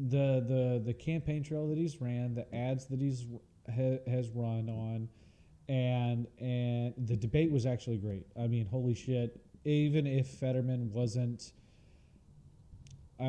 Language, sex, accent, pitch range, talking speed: English, male, American, 110-135 Hz, 135 wpm